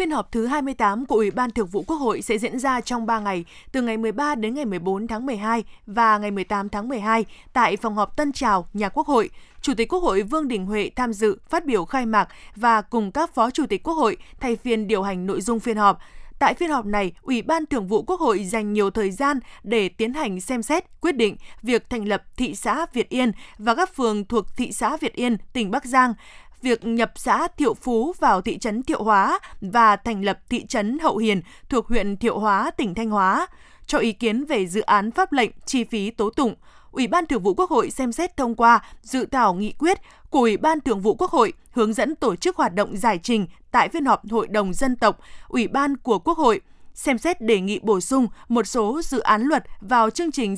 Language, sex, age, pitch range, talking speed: Vietnamese, female, 20-39, 215-275 Hz, 235 wpm